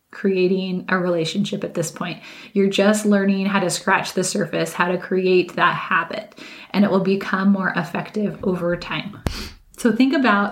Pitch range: 175-200 Hz